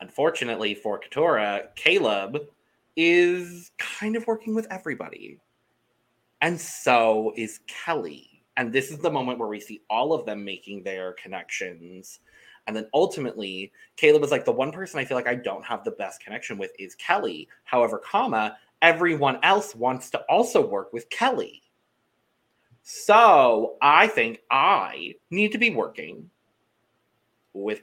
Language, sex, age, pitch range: English, male, 30-49, 105-155 Hz